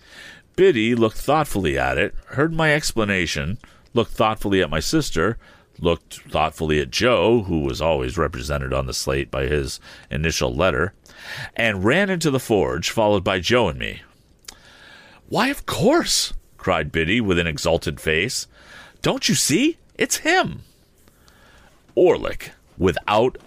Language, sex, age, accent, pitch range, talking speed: English, male, 40-59, American, 80-130 Hz, 140 wpm